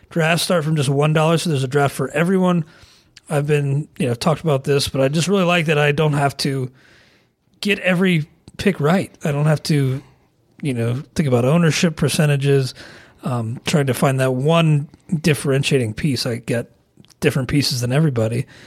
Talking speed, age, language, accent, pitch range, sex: 185 wpm, 30-49, English, American, 135-165 Hz, male